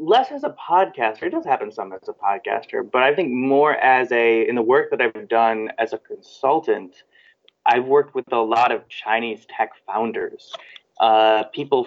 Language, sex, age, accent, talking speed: English, male, 20-39, American, 185 wpm